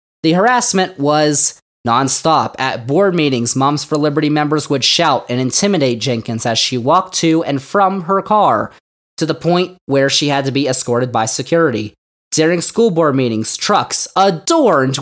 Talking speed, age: 165 wpm, 20-39